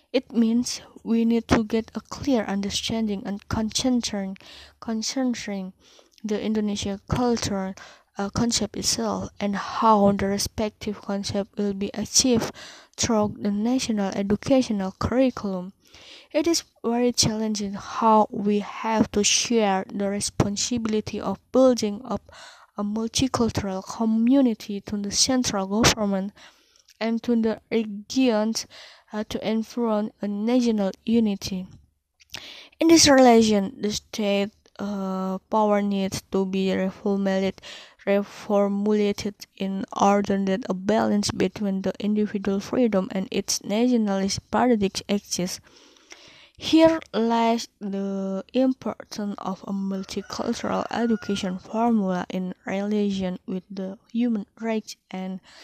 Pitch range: 200-230 Hz